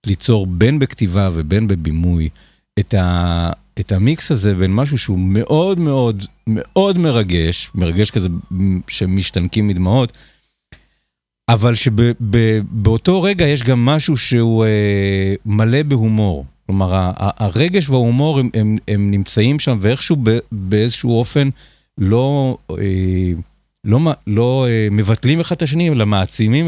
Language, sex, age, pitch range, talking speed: Hebrew, male, 50-69, 90-120 Hz, 130 wpm